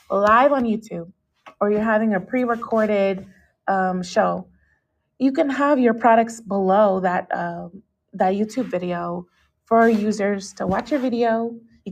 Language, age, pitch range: English, 20-39, 185-225 Hz